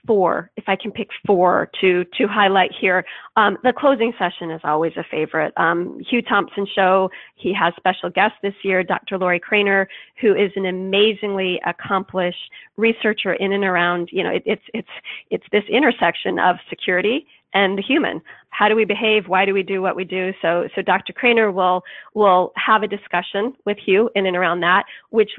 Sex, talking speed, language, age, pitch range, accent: female, 190 wpm, English, 40-59, 185-215 Hz, American